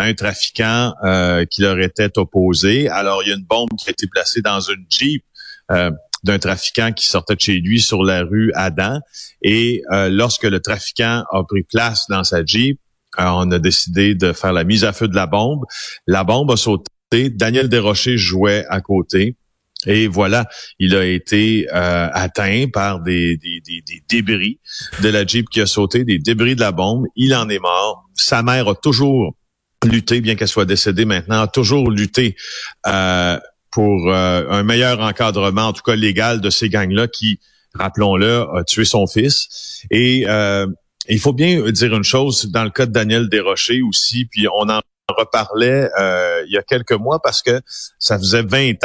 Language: French